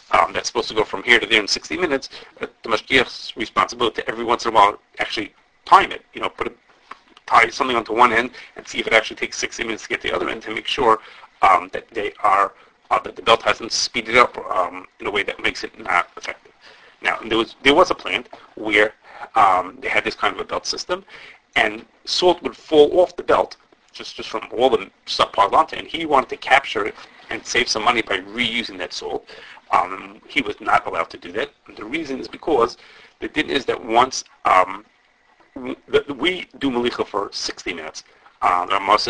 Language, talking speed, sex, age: English, 225 wpm, male, 30-49